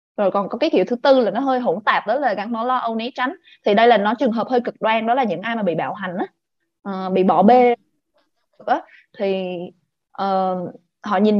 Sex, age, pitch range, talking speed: female, 20-39, 200-260 Hz, 245 wpm